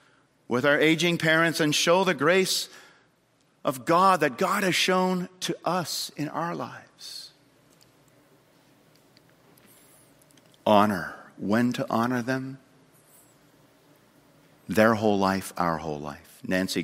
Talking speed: 110 wpm